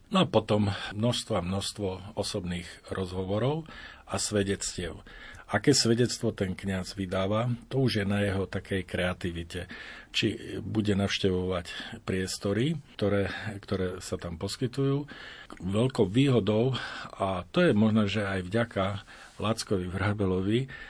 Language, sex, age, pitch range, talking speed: Slovak, male, 50-69, 95-115 Hz, 120 wpm